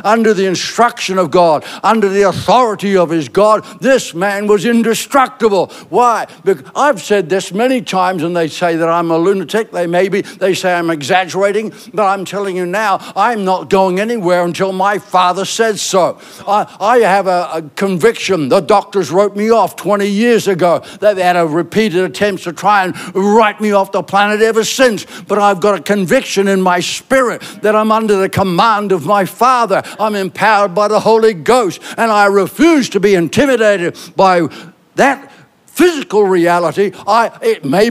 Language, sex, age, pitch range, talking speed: English, male, 60-79, 180-215 Hz, 175 wpm